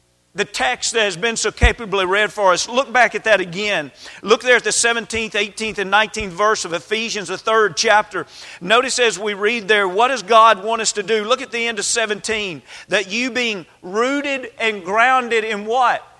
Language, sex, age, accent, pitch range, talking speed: English, male, 40-59, American, 215-260 Hz, 205 wpm